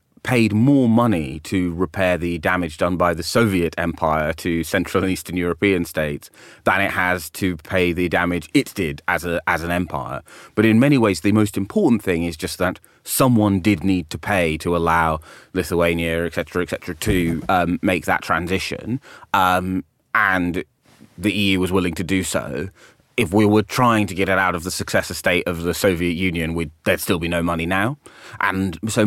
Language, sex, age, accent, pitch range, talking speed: English, male, 30-49, British, 85-105 Hz, 190 wpm